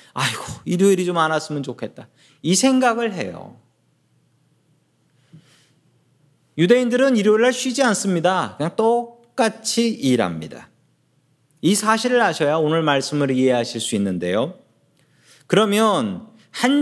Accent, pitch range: native, 140-220 Hz